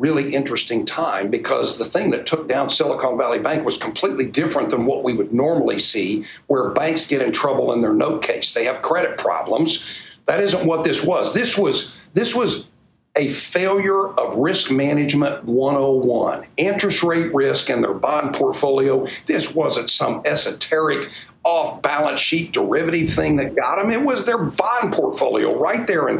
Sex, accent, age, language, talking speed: male, American, 50-69, English, 175 wpm